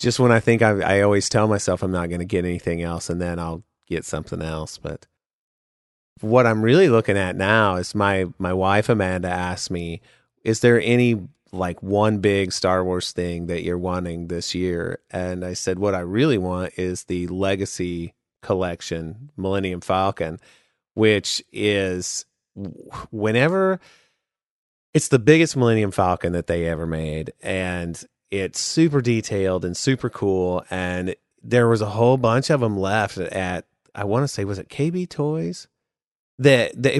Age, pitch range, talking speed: 30-49, 90-110 Hz, 165 wpm